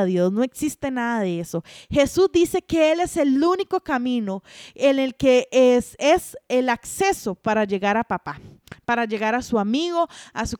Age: 30-49